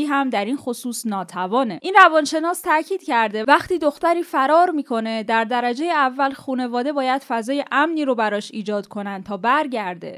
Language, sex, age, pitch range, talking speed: Persian, female, 10-29, 215-290 Hz, 155 wpm